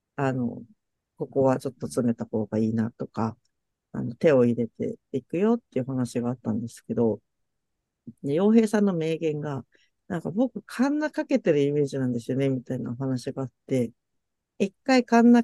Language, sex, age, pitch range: Japanese, female, 50-69, 130-210 Hz